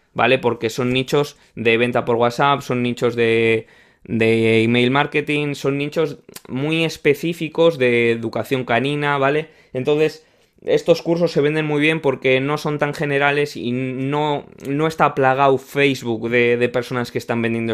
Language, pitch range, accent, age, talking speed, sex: Spanish, 120-150 Hz, Spanish, 20-39, 155 wpm, male